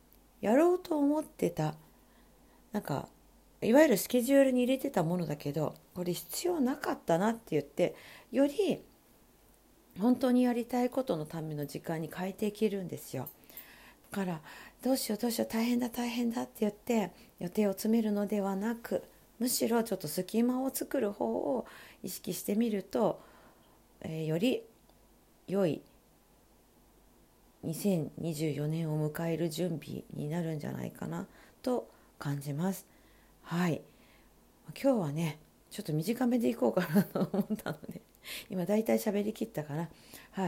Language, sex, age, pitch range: Japanese, female, 50-69, 160-240 Hz